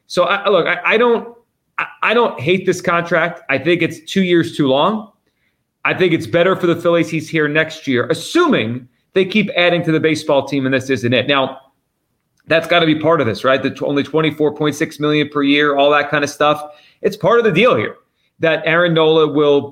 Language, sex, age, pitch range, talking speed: English, male, 30-49, 145-175 Hz, 230 wpm